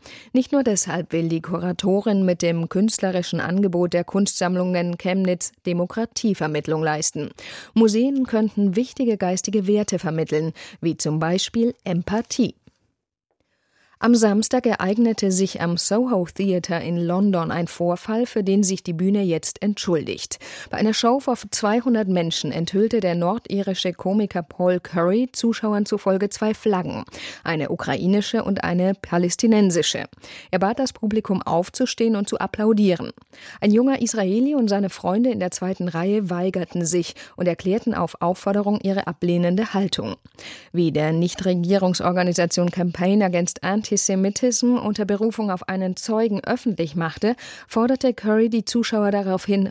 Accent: German